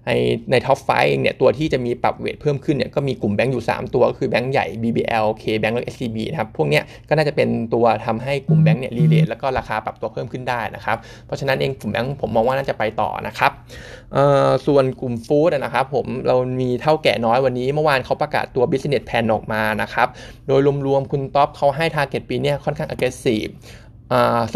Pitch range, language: 115-140 Hz, Thai